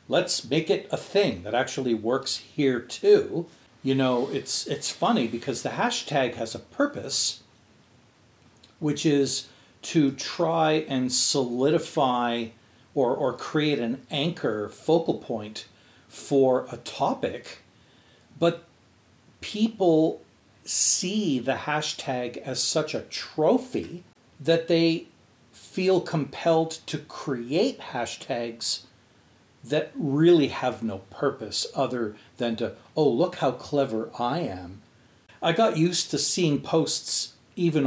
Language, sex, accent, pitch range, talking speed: English, male, American, 115-165 Hz, 115 wpm